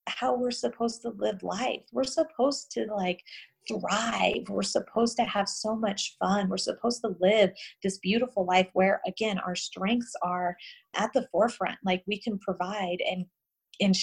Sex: female